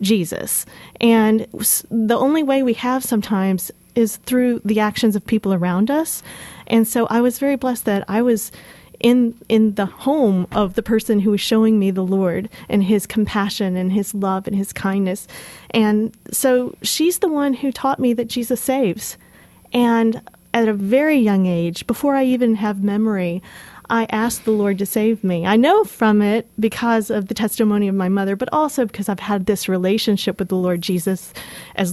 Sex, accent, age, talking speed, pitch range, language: female, American, 30-49, 185 wpm, 195-230 Hz, English